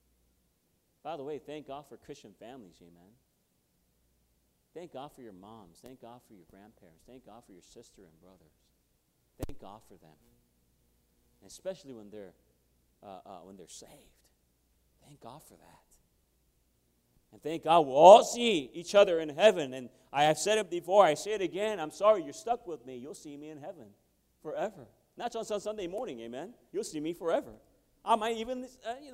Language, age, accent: English, 40-59, American